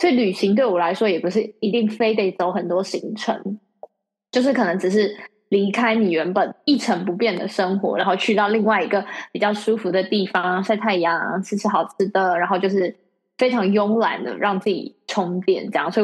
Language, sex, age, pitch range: Chinese, female, 20-39, 190-235 Hz